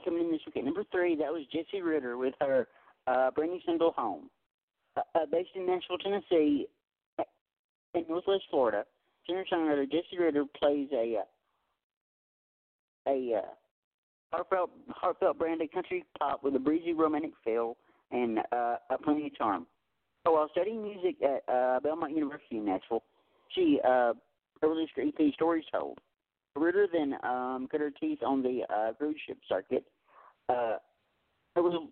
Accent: American